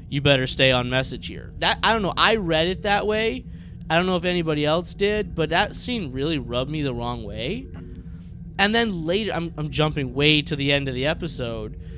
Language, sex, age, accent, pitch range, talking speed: English, male, 20-39, American, 130-205 Hz, 220 wpm